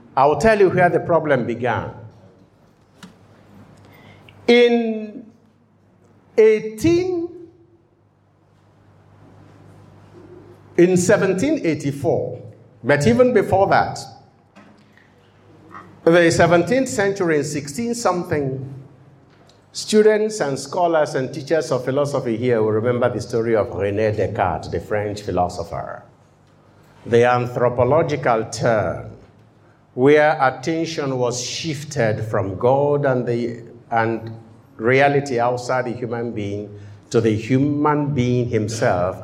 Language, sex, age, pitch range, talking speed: English, male, 60-79, 115-165 Hz, 95 wpm